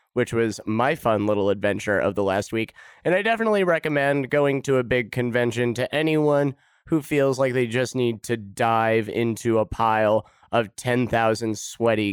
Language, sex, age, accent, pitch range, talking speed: English, male, 30-49, American, 110-135 Hz, 175 wpm